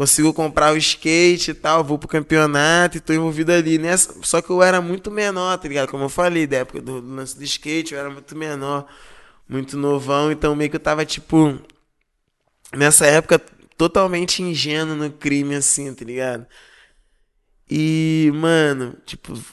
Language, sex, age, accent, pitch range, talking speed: Portuguese, male, 20-39, Brazilian, 120-155 Hz, 170 wpm